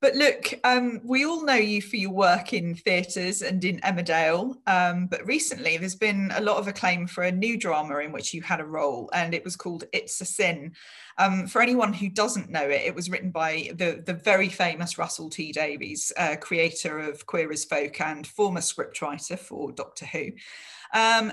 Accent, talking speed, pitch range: British, 205 wpm, 160-210 Hz